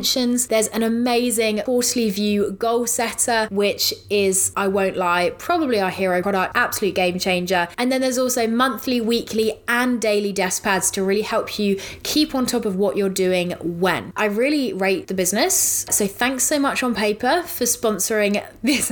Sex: female